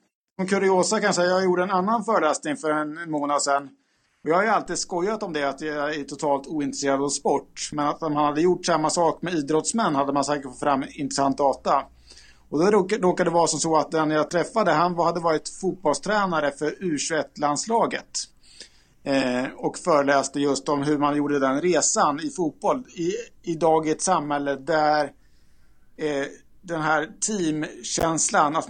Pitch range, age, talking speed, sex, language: 140-175 Hz, 50-69, 180 wpm, male, Swedish